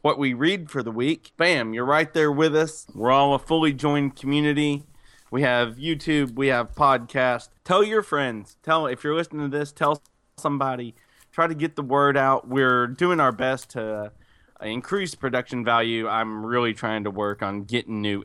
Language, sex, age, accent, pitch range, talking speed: English, male, 20-39, American, 110-145 Hz, 185 wpm